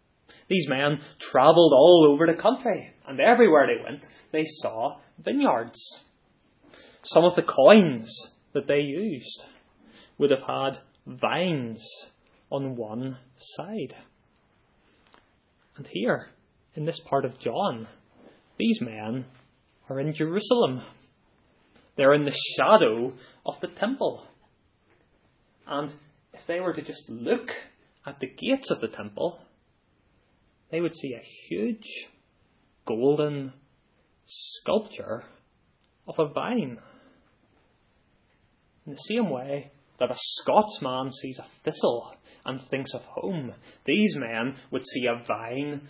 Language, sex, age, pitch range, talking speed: English, male, 10-29, 130-170 Hz, 120 wpm